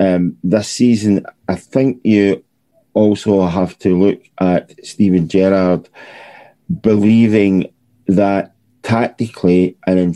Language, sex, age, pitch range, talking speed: English, male, 50-69, 90-105 Hz, 105 wpm